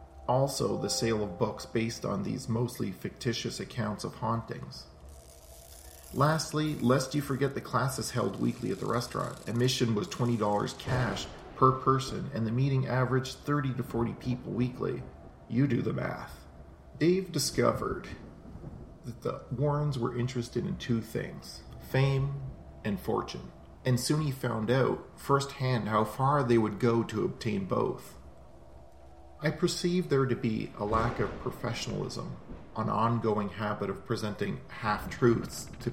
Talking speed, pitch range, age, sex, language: 145 wpm, 100-130 Hz, 40-59, male, English